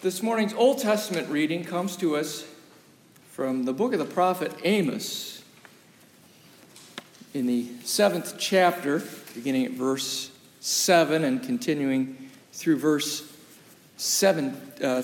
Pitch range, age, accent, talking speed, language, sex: 145-205 Hz, 50-69, American, 115 wpm, English, male